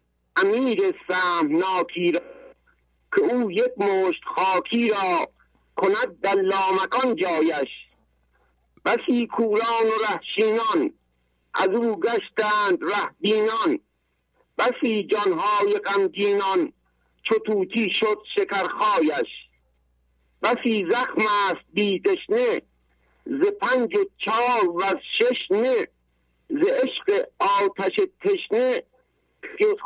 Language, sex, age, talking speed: English, male, 60-79, 80 wpm